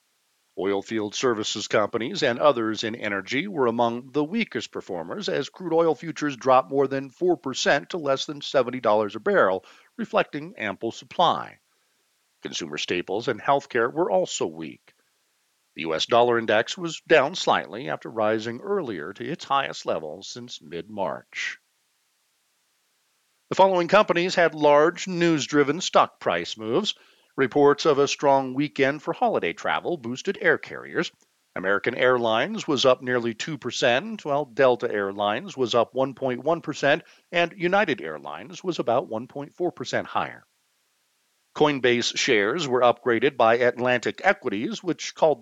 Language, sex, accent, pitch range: English, male, American, 120-165 Hz